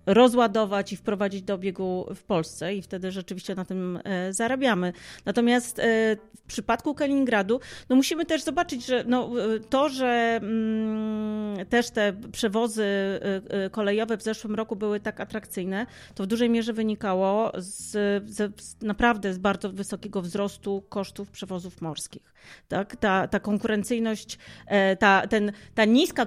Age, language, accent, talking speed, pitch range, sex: 30-49, Polish, native, 130 wpm, 200-235 Hz, female